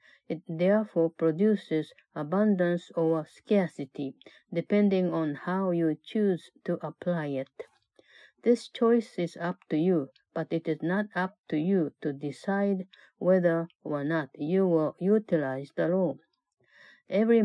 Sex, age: female, 50-69